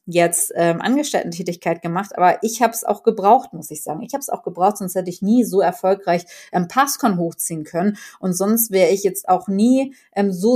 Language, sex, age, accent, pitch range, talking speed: German, female, 30-49, German, 175-220 Hz, 210 wpm